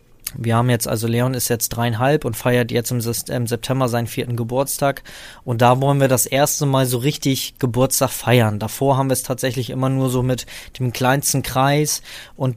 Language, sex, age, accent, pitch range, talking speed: German, male, 20-39, German, 120-140 Hz, 190 wpm